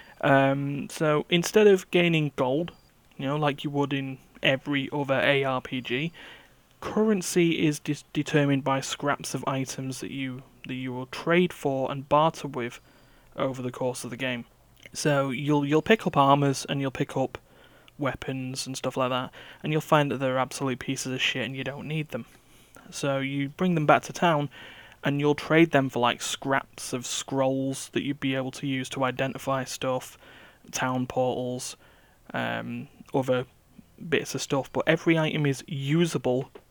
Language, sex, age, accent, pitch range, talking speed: English, male, 30-49, British, 130-150 Hz, 170 wpm